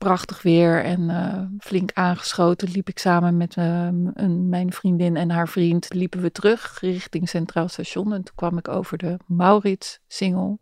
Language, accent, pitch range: Dutch, Dutch, 175-195 Hz